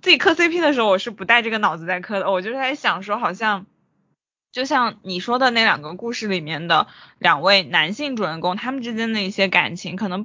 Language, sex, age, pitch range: Chinese, female, 20-39, 190-255 Hz